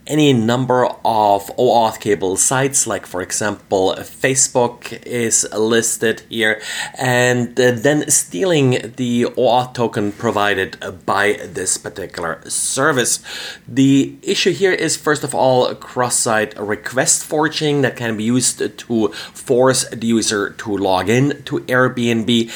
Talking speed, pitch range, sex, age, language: 125 wpm, 115-140 Hz, male, 30-49, English